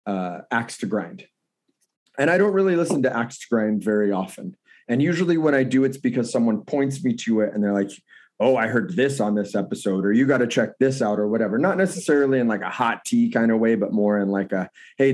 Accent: American